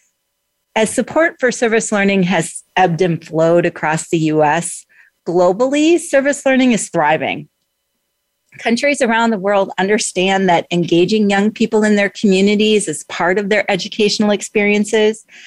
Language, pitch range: English, 175-215 Hz